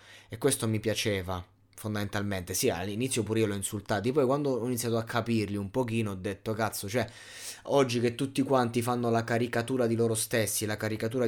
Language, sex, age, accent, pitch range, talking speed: Italian, male, 20-39, native, 110-125 Hz, 185 wpm